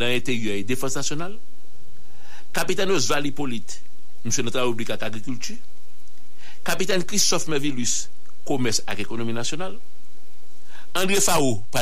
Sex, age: male, 60-79